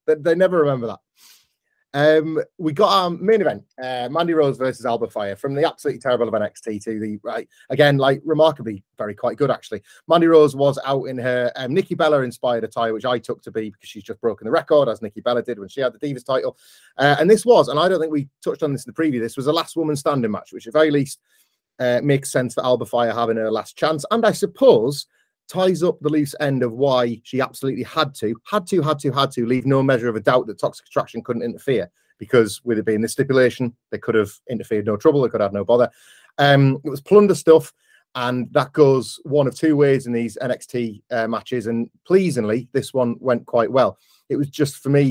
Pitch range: 115-150 Hz